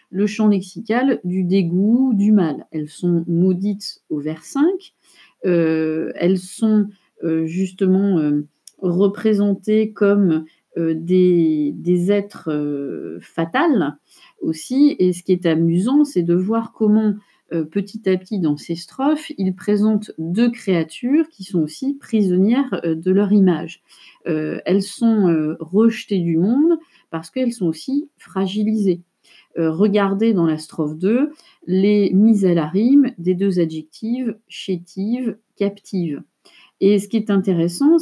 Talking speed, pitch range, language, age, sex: 140 wpm, 170-220 Hz, French, 40-59, female